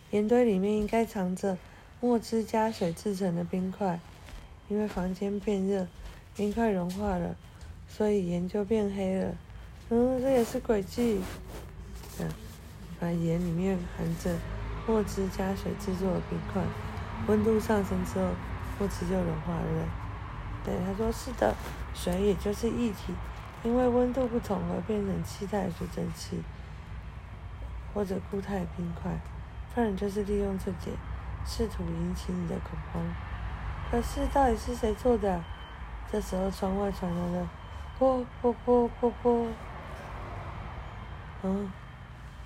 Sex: female